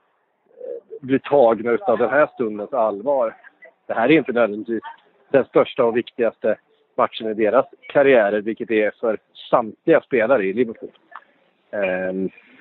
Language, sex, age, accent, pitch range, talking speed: English, male, 40-59, Norwegian, 105-130 Hz, 135 wpm